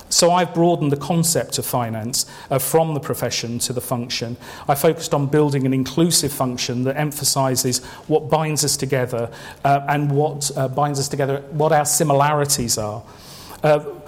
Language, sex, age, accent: English, male, 40-59, British